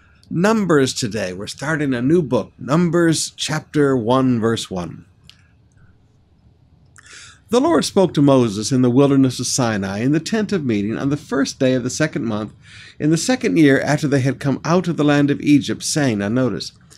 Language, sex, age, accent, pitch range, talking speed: English, male, 60-79, American, 115-155 Hz, 185 wpm